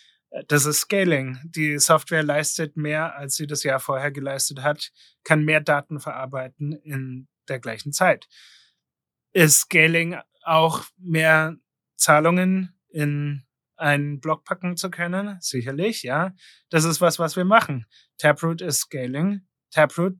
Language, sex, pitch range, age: German, male, 145-170 Hz, 30-49